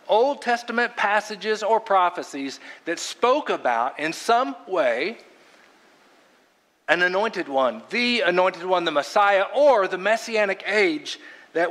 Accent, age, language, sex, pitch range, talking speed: American, 50-69, English, male, 175-230 Hz, 125 wpm